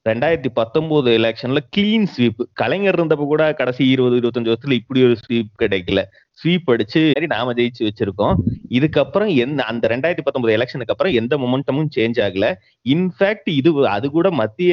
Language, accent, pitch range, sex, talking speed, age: Tamil, native, 115-160 Hz, male, 80 wpm, 30-49